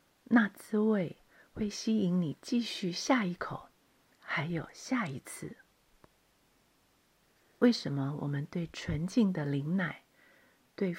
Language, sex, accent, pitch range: Chinese, female, native, 150-210 Hz